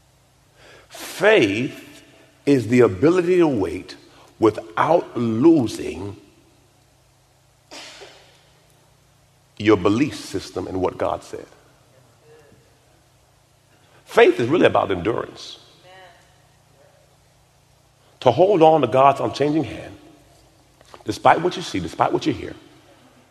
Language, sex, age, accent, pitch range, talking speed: English, male, 50-69, American, 120-145 Hz, 90 wpm